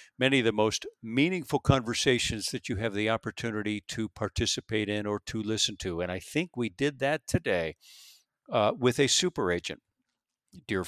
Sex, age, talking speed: male, 50-69, 170 wpm